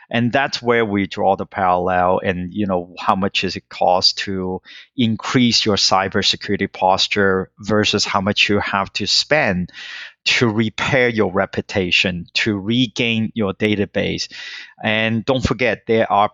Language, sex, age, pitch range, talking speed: English, male, 30-49, 95-120 Hz, 145 wpm